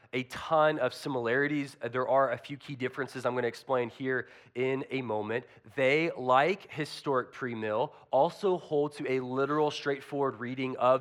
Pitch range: 125-165 Hz